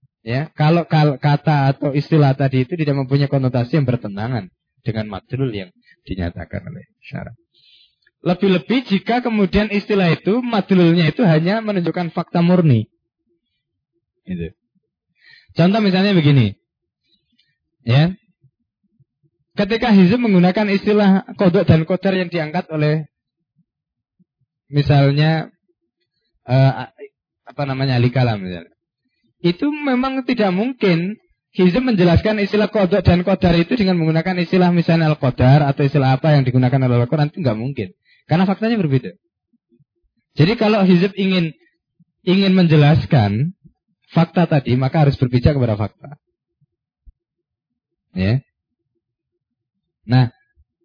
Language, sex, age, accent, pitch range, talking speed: Indonesian, male, 20-39, native, 130-190 Hz, 115 wpm